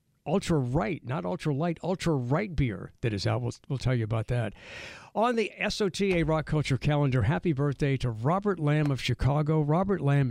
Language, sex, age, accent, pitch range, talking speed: English, male, 60-79, American, 115-155 Hz, 185 wpm